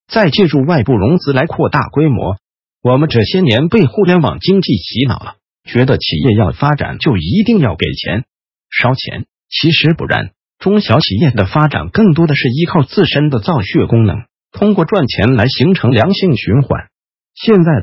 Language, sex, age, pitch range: Chinese, male, 50-69, 115-170 Hz